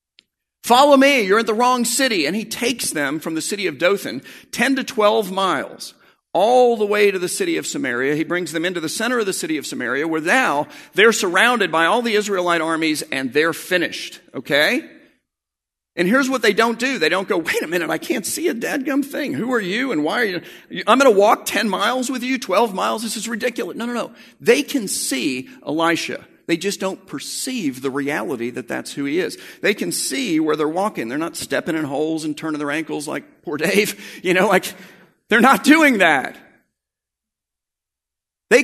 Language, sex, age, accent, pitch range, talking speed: English, male, 50-69, American, 155-260 Hz, 210 wpm